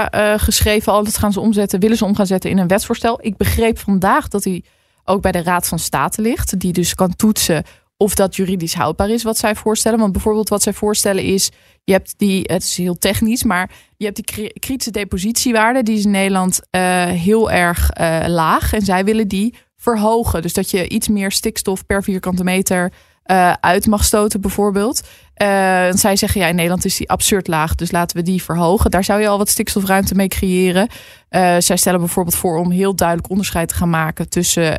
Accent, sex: Dutch, female